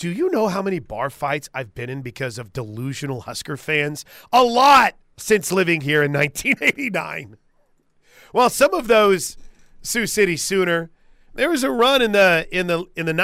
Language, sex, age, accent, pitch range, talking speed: English, male, 40-59, American, 125-180 Hz, 170 wpm